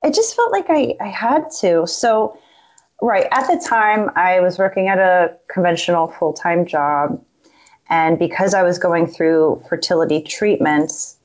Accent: American